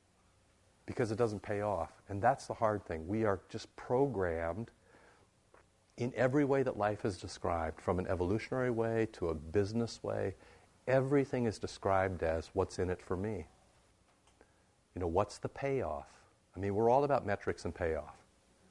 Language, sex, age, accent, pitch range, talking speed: English, male, 50-69, American, 95-115 Hz, 165 wpm